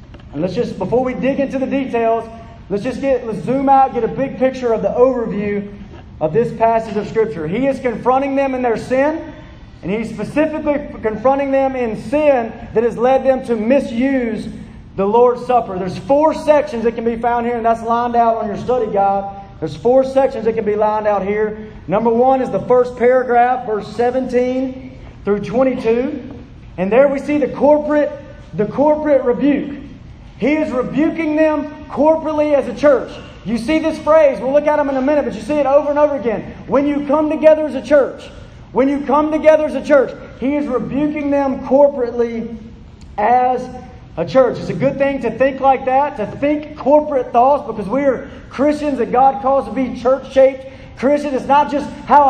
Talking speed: 195 wpm